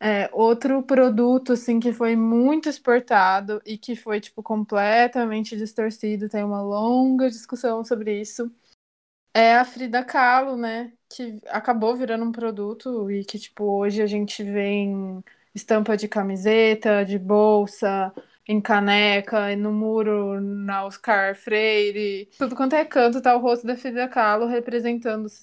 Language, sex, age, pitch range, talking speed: Portuguese, female, 20-39, 210-250 Hz, 145 wpm